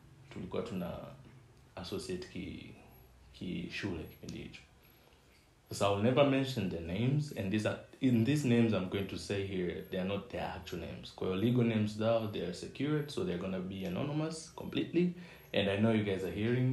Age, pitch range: 30-49, 95-120 Hz